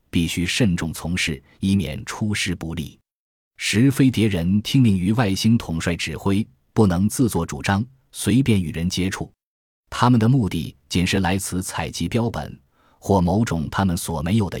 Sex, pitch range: male, 85-115 Hz